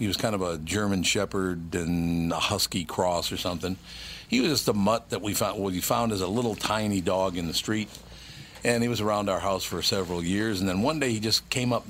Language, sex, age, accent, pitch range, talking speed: English, male, 50-69, American, 90-115 Hz, 245 wpm